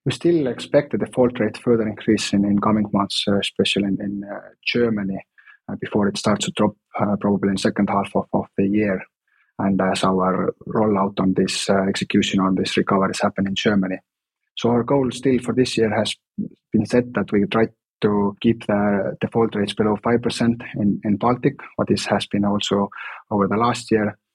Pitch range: 100-110 Hz